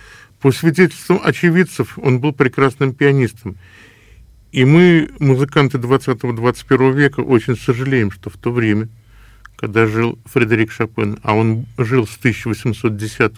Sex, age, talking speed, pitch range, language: male, 50-69, 120 wpm, 110-135 Hz, Russian